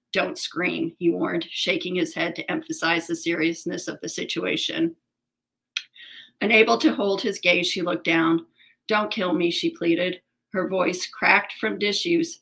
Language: English